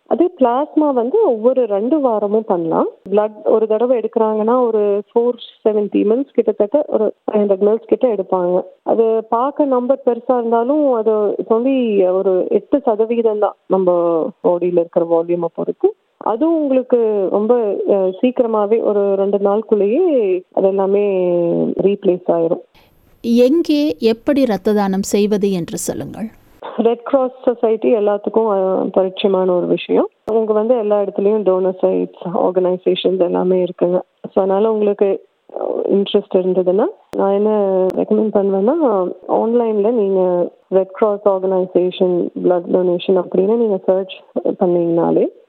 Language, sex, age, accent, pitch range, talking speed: Tamil, female, 30-49, native, 190-240 Hz, 95 wpm